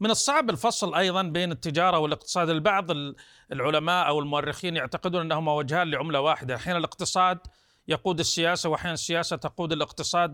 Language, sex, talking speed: Arabic, male, 140 wpm